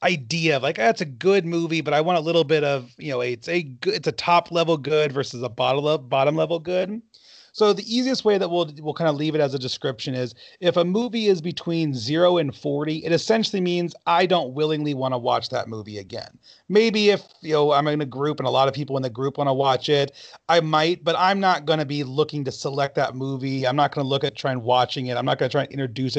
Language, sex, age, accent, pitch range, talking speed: English, male, 30-49, American, 140-185 Hz, 260 wpm